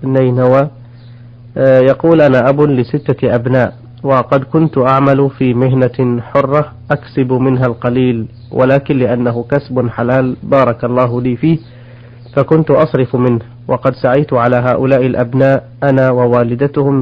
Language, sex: Arabic, male